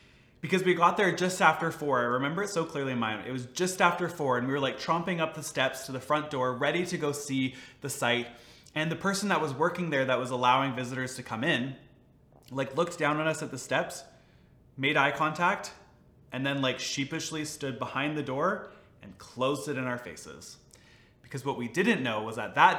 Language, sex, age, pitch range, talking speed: English, male, 20-39, 120-160 Hz, 225 wpm